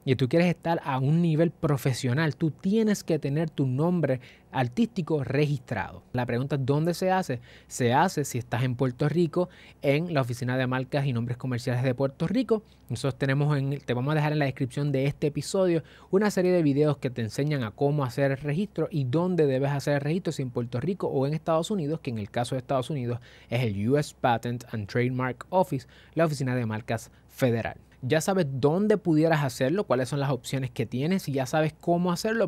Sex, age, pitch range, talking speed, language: male, 20-39, 130-165 Hz, 210 wpm, Spanish